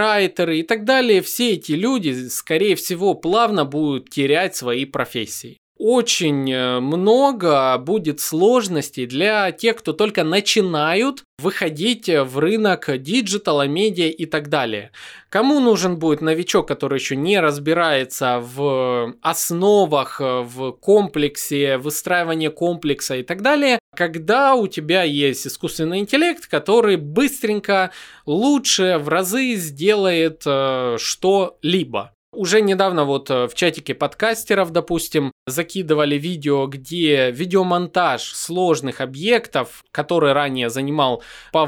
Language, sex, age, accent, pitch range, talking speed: Russian, male, 20-39, native, 145-205 Hz, 115 wpm